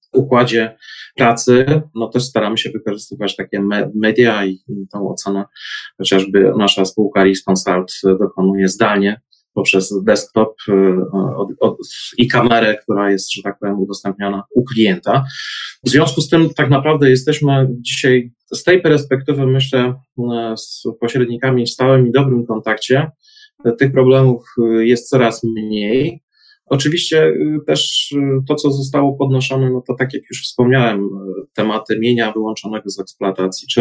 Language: Polish